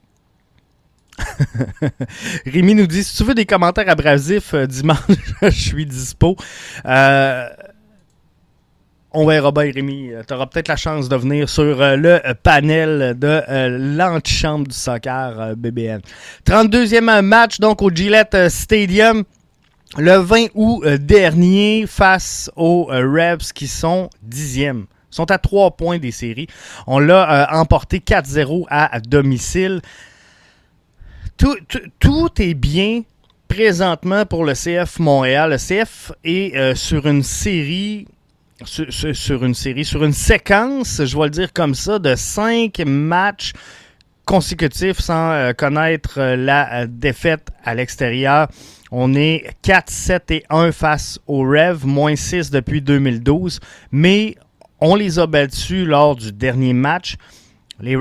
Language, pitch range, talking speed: French, 135-180 Hz, 135 wpm